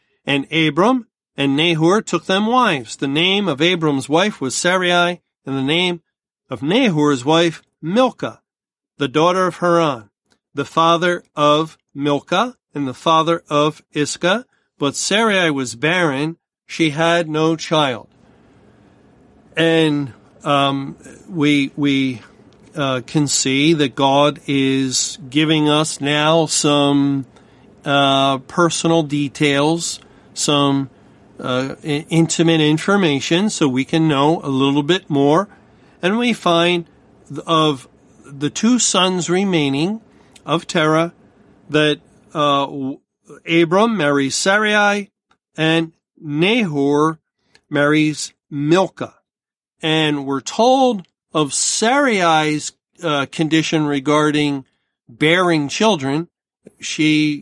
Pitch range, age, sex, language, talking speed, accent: 140-175 Hz, 40-59, male, English, 105 wpm, American